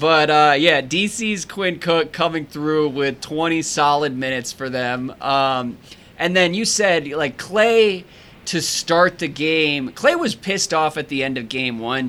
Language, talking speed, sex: English, 175 wpm, male